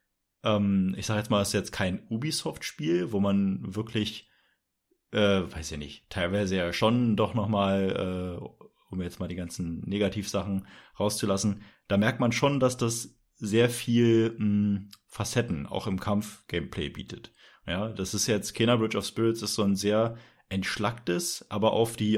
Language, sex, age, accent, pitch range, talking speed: German, male, 30-49, German, 95-115 Hz, 160 wpm